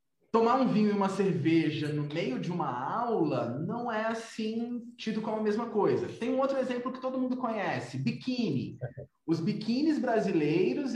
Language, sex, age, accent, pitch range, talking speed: Portuguese, male, 20-39, Brazilian, 175-255 Hz, 170 wpm